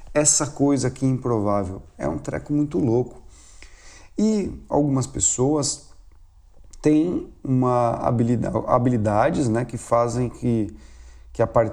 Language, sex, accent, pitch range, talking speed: Portuguese, male, Brazilian, 105-140 Hz, 100 wpm